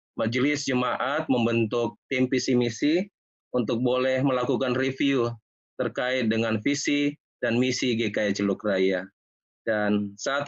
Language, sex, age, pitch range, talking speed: Indonesian, male, 20-39, 115-145 Hz, 115 wpm